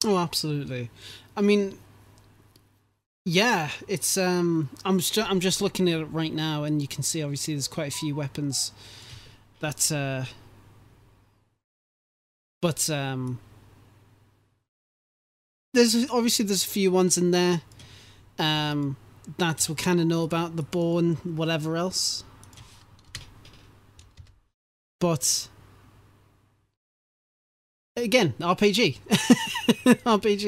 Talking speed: 105 wpm